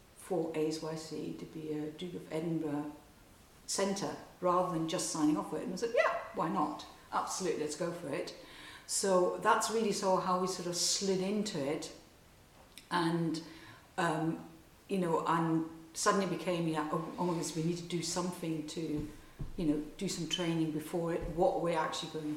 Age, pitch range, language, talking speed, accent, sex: 50-69, 155-175 Hz, English, 180 wpm, British, female